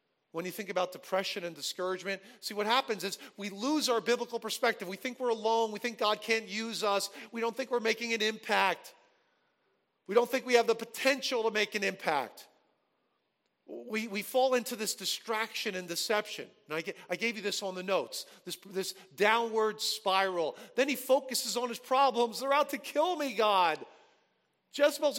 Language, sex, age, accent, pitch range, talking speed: English, male, 40-59, American, 200-255 Hz, 185 wpm